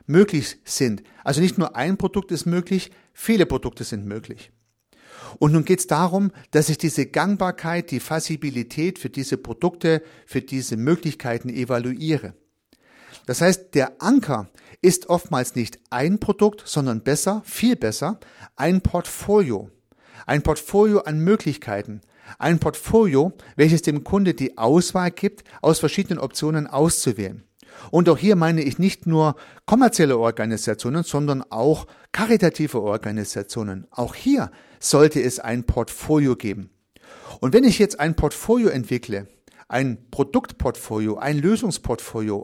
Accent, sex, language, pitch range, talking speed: German, male, German, 125-180 Hz, 130 wpm